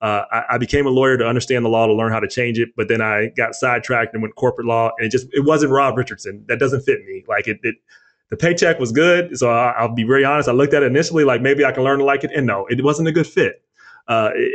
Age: 30-49